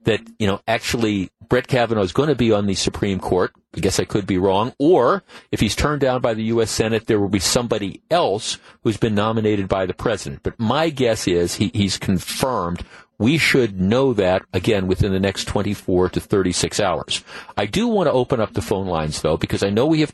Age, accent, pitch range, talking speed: 50-69, American, 100-120 Hz, 220 wpm